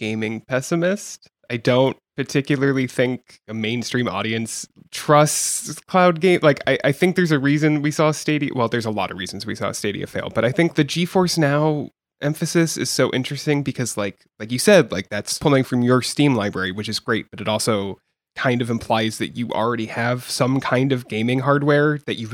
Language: English